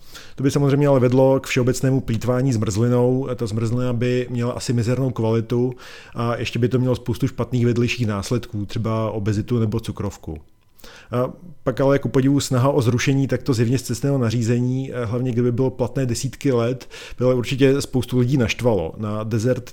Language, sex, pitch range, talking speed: Czech, male, 115-130 Hz, 175 wpm